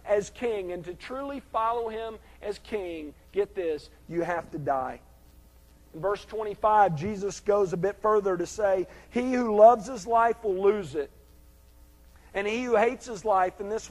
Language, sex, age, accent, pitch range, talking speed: English, male, 50-69, American, 155-225 Hz, 175 wpm